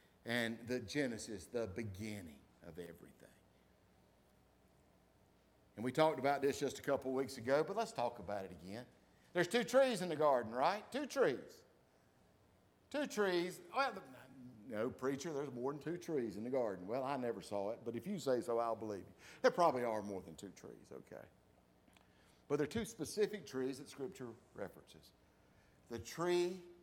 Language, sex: English, male